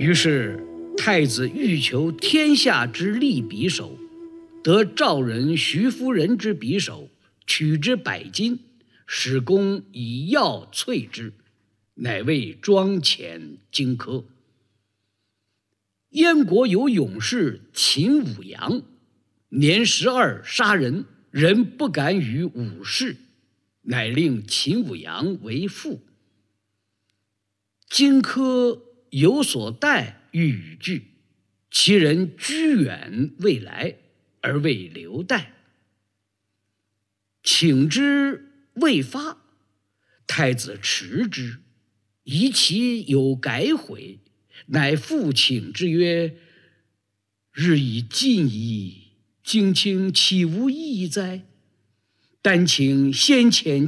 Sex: male